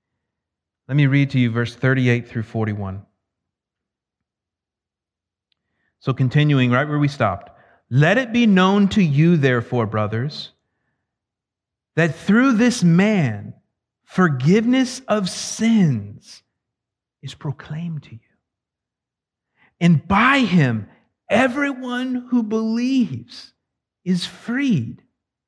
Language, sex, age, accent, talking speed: English, male, 50-69, American, 100 wpm